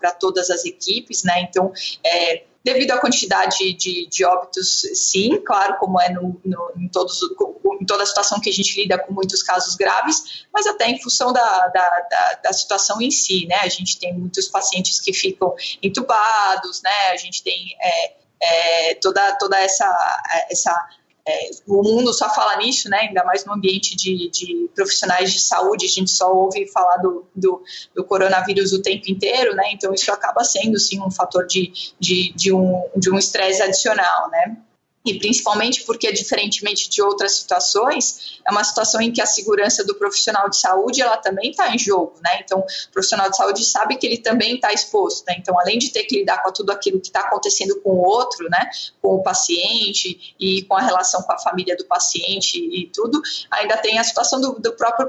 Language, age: Portuguese, 20-39